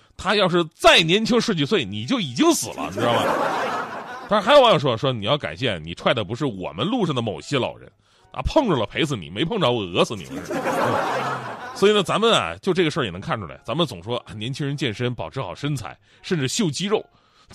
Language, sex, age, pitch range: Chinese, male, 20-39, 115-180 Hz